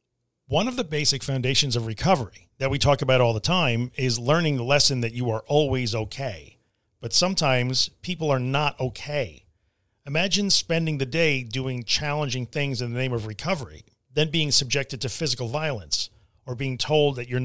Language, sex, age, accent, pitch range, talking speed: English, male, 40-59, American, 120-150 Hz, 180 wpm